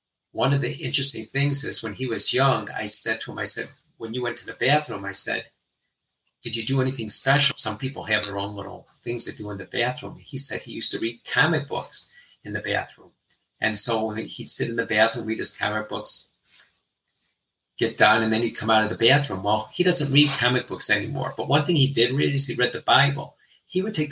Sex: male